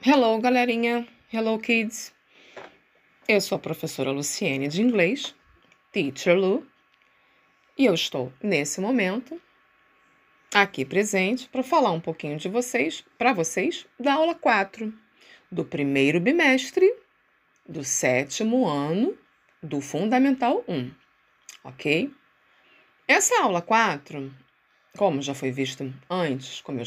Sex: female